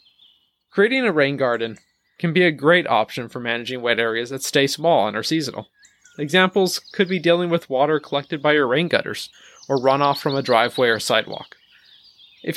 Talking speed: 180 wpm